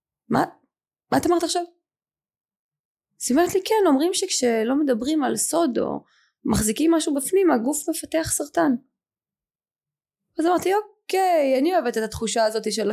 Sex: female